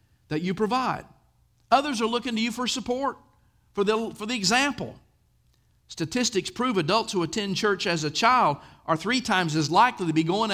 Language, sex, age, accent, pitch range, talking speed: English, male, 50-69, American, 165-235 Hz, 175 wpm